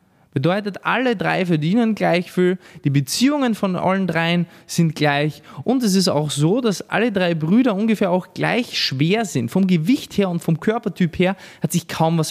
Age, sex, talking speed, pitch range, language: 20-39, male, 185 wpm, 170-225 Hz, German